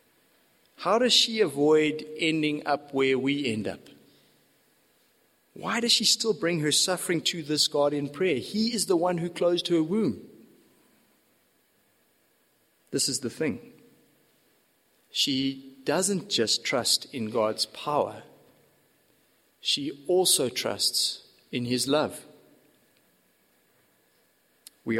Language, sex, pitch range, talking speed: English, male, 140-180 Hz, 115 wpm